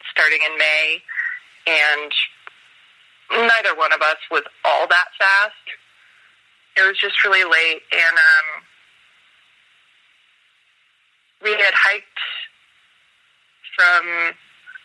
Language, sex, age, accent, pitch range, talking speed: English, female, 30-49, American, 160-205 Hz, 95 wpm